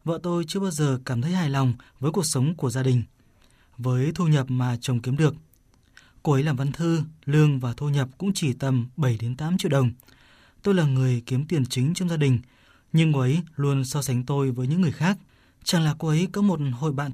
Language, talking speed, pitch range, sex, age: Vietnamese, 230 wpm, 130-165 Hz, male, 20-39